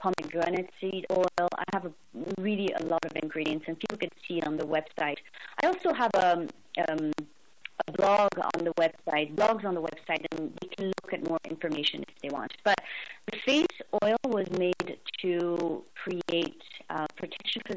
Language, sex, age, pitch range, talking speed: English, female, 30-49, 165-190 Hz, 175 wpm